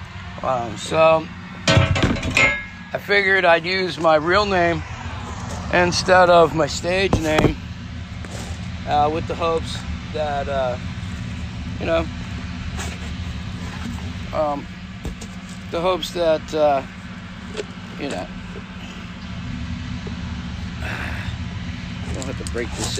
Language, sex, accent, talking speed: English, male, American, 90 wpm